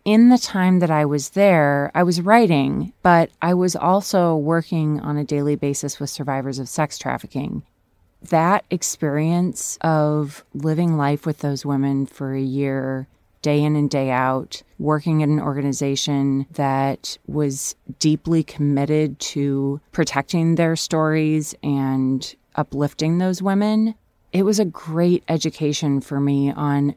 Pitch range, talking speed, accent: 140-165 Hz, 140 wpm, American